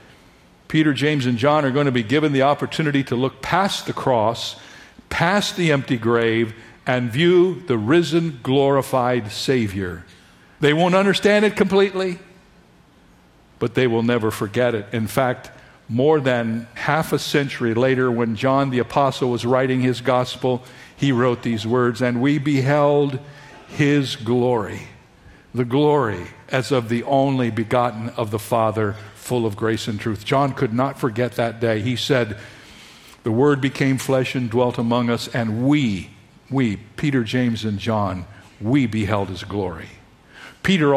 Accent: American